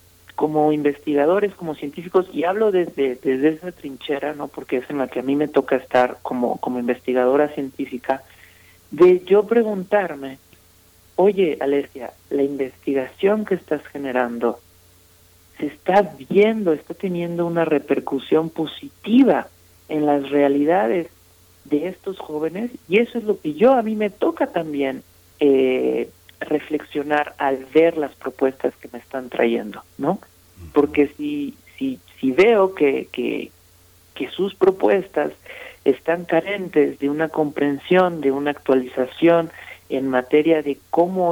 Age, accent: 50-69, Mexican